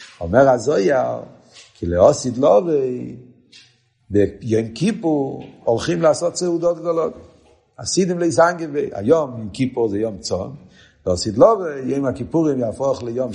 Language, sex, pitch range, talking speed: Hebrew, male, 115-175 Hz, 105 wpm